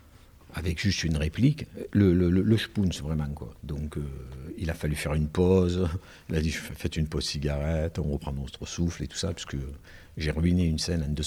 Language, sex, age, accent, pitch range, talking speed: French, male, 60-79, French, 80-95 Hz, 215 wpm